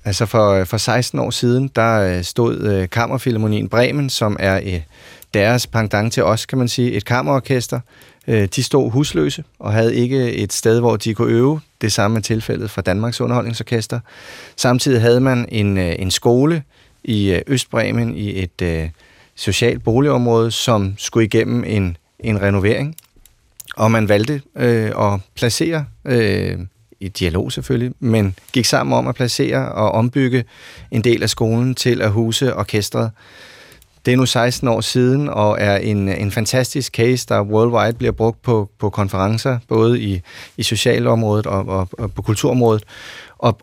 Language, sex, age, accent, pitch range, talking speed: Danish, male, 30-49, native, 105-125 Hz, 165 wpm